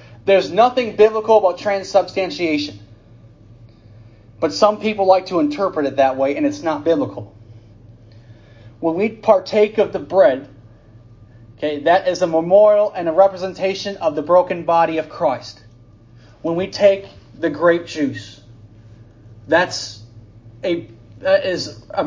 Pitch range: 115-190 Hz